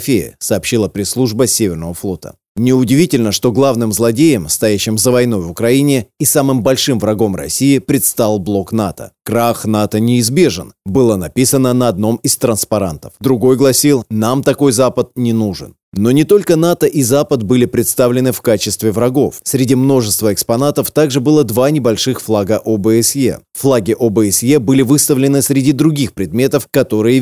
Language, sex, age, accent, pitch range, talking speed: Russian, male, 30-49, native, 110-140 Hz, 145 wpm